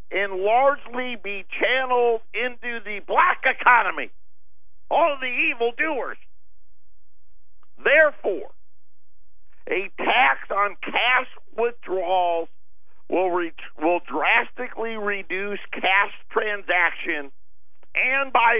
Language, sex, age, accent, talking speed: English, male, 50-69, American, 80 wpm